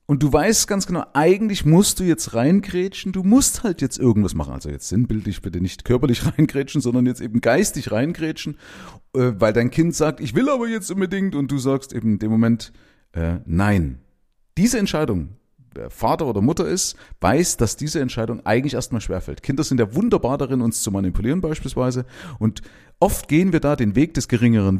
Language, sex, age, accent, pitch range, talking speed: German, male, 40-59, German, 110-170 Hz, 190 wpm